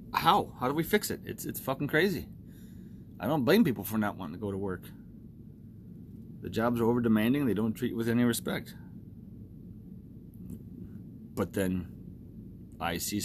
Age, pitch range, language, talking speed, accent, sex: 30-49, 95-120 Hz, English, 165 wpm, American, male